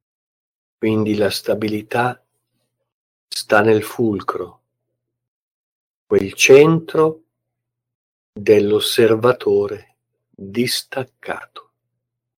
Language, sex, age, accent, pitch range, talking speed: Italian, male, 50-69, native, 110-125 Hz, 50 wpm